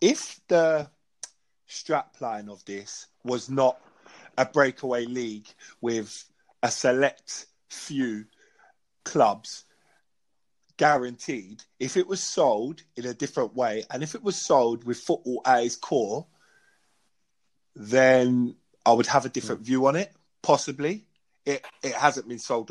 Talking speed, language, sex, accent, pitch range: 130 wpm, English, male, British, 120-155 Hz